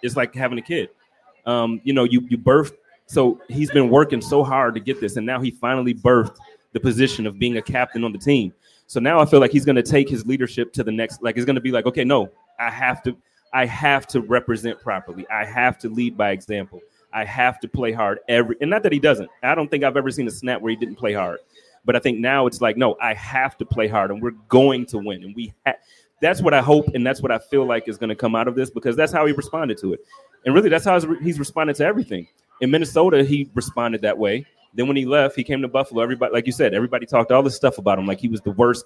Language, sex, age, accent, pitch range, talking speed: English, male, 30-49, American, 120-140 Hz, 275 wpm